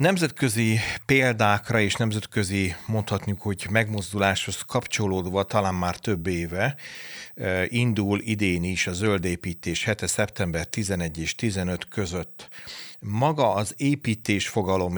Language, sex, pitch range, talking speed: Hungarian, male, 90-105 Hz, 105 wpm